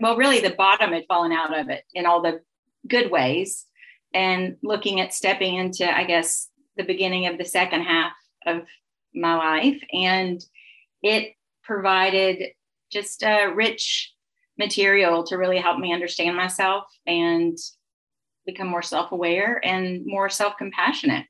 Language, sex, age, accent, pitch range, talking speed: English, female, 40-59, American, 185-235 Hz, 140 wpm